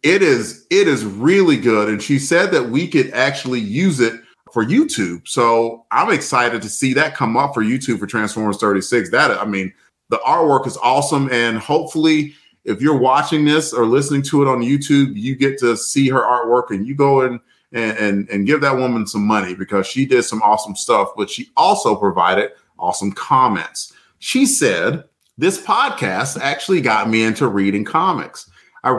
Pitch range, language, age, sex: 115-165 Hz, English, 30-49, male